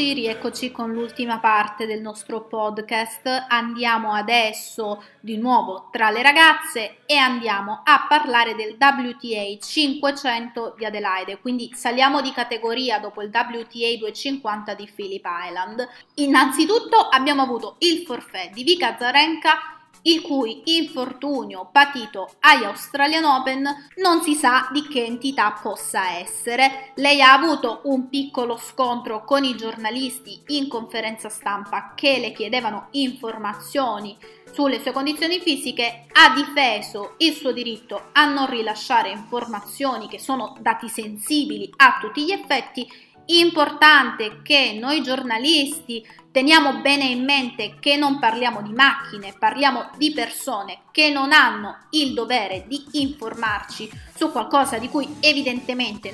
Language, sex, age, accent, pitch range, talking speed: Italian, female, 20-39, native, 225-285 Hz, 130 wpm